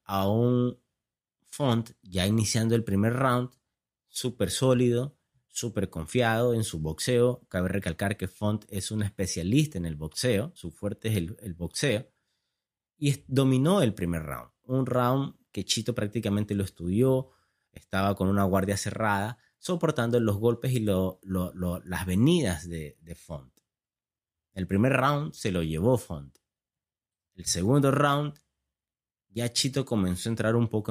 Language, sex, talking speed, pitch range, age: Spanish, male, 145 wpm, 95-125 Hz, 30-49